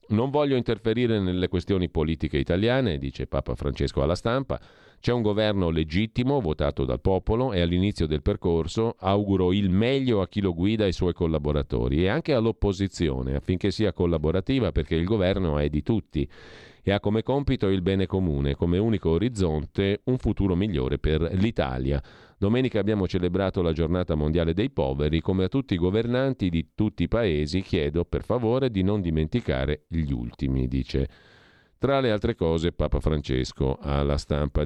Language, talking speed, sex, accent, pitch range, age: Italian, 165 wpm, male, native, 80-110 Hz, 40-59